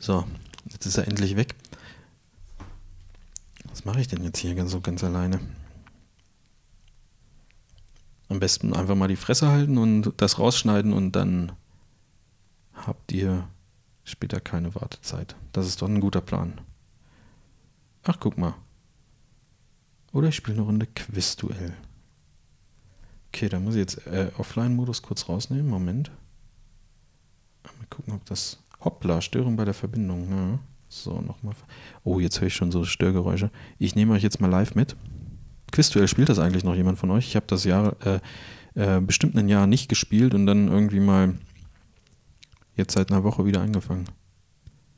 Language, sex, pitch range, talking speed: German, male, 90-110 Hz, 150 wpm